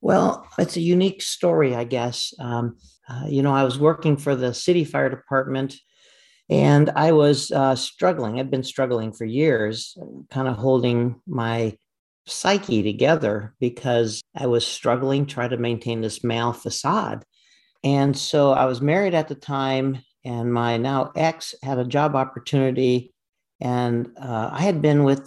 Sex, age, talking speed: male, 50-69, 160 wpm